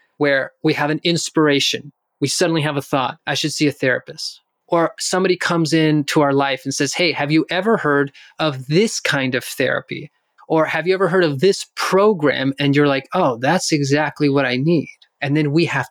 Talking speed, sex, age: 205 wpm, male, 30-49